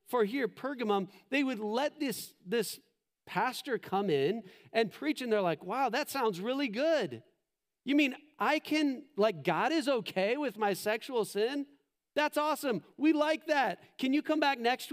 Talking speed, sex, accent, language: 175 wpm, male, American, English